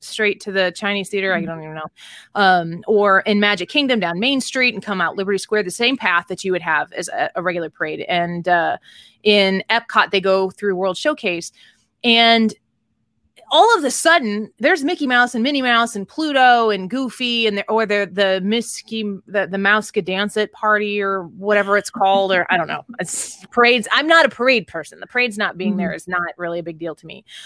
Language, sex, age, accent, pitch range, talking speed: English, female, 20-39, American, 190-255 Hz, 220 wpm